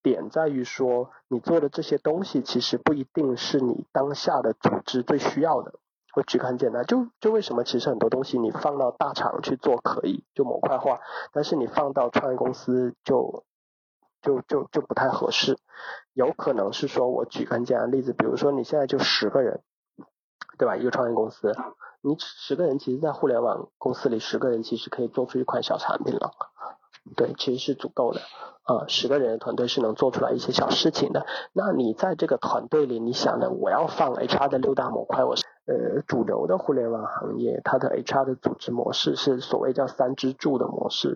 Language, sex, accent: Chinese, male, native